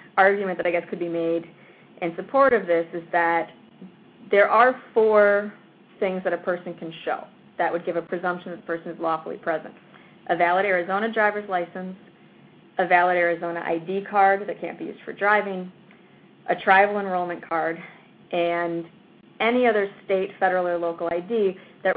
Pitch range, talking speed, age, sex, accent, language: 170-200 Hz, 170 wpm, 20-39, female, American, English